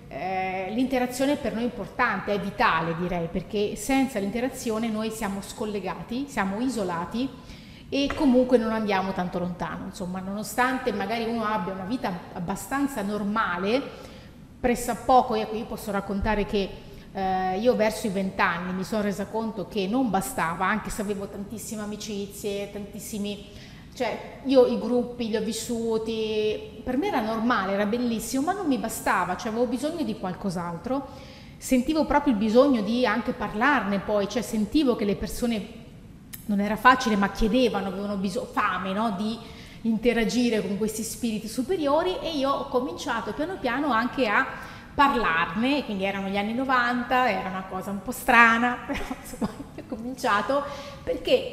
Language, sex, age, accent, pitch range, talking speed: Italian, female, 30-49, native, 205-255 Hz, 155 wpm